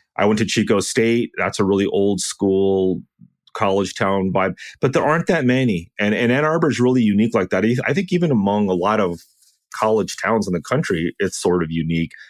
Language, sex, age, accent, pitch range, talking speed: English, male, 30-49, American, 90-120 Hz, 210 wpm